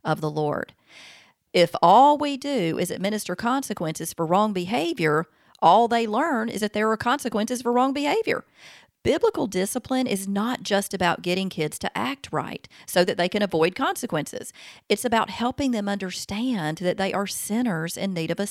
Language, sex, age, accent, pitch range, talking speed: English, female, 40-59, American, 165-225 Hz, 175 wpm